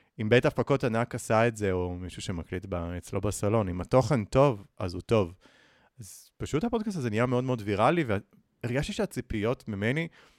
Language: Hebrew